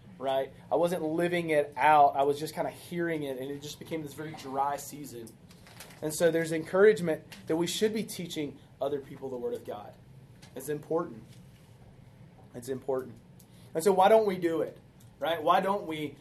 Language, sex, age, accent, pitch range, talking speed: English, male, 30-49, American, 145-180 Hz, 190 wpm